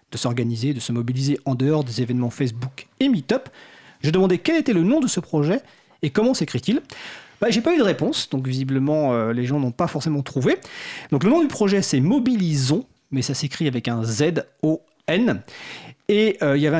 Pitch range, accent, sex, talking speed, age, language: 140-210 Hz, French, male, 205 wpm, 40-59, French